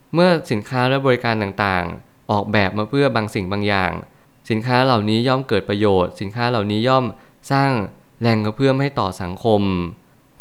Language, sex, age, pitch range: Thai, male, 20-39, 100-125 Hz